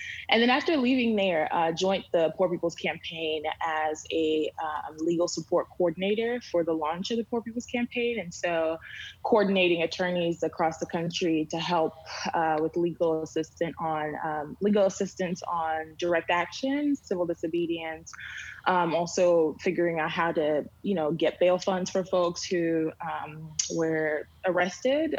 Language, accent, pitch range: English, American, 160-185 Hz